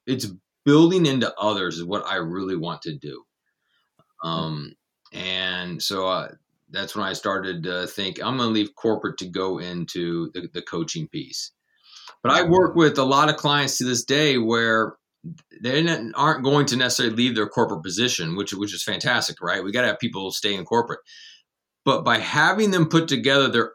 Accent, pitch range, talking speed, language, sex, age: American, 105-145 Hz, 185 wpm, English, male, 30-49